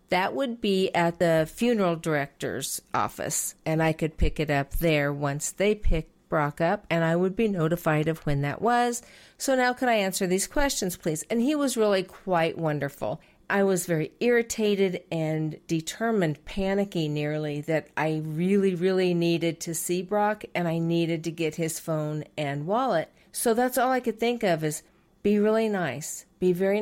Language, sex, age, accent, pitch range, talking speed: English, female, 50-69, American, 160-215 Hz, 180 wpm